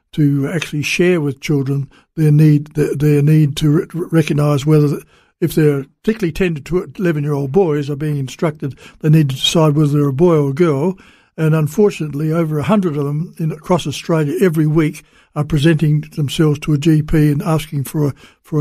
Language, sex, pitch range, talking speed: English, male, 145-175 Hz, 185 wpm